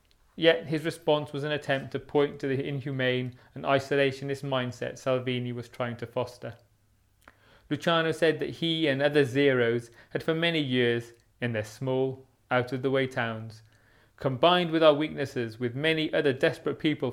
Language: English